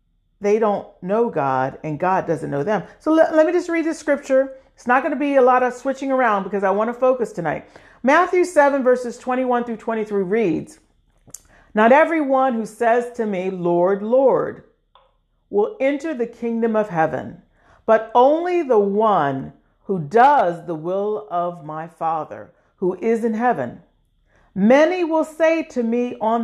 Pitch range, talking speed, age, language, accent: 195-295 Hz, 170 wpm, 40-59, English, American